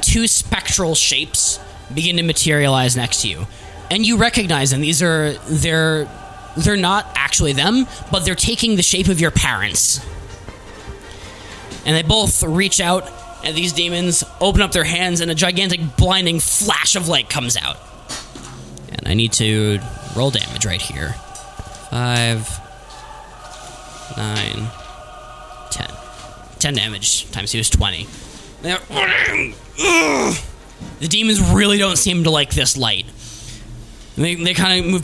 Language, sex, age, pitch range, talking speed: English, male, 20-39, 110-170 Hz, 135 wpm